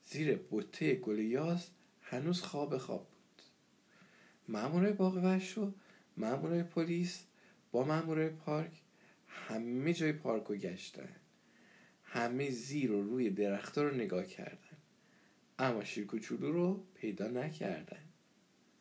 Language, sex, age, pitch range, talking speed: Persian, male, 50-69, 105-170 Hz, 100 wpm